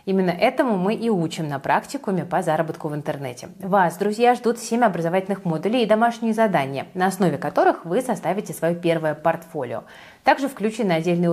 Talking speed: 165 wpm